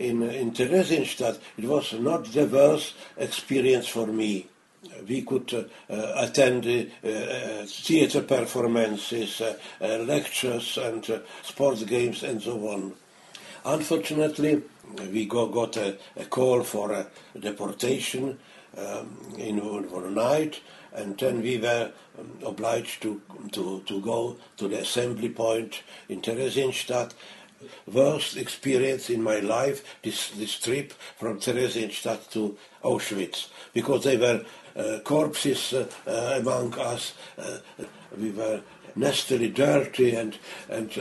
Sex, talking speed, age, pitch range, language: male, 125 wpm, 60-79, 110-135 Hz, English